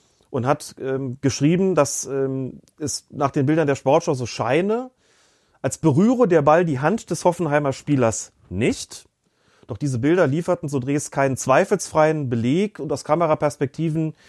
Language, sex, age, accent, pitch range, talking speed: German, male, 30-49, German, 125-155 Hz, 150 wpm